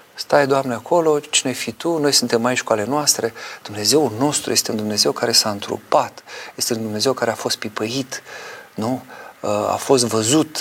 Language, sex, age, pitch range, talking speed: Romanian, male, 40-59, 110-130 Hz, 180 wpm